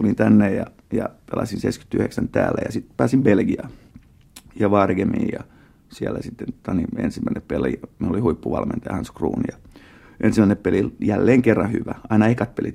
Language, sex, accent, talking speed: Finnish, male, native, 155 wpm